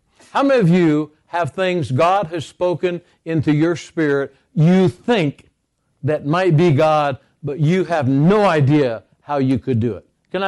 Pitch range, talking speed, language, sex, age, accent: 140-165 Hz, 165 wpm, English, male, 60-79, American